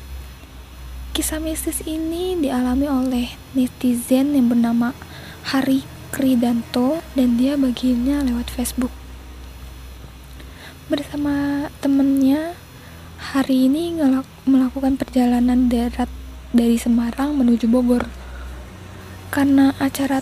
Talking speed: 85 wpm